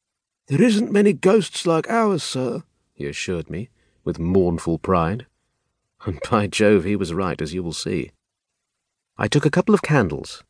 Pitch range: 95-130 Hz